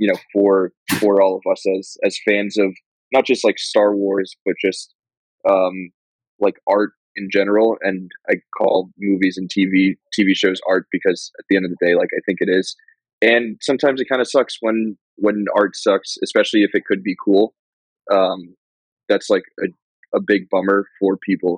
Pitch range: 95-105 Hz